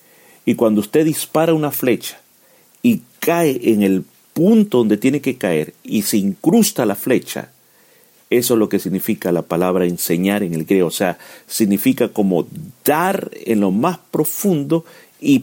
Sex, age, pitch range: male, 50-69, 100-130 Hz